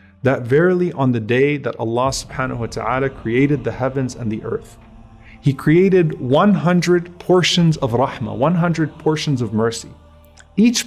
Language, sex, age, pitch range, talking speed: English, male, 30-49, 115-155 Hz, 160 wpm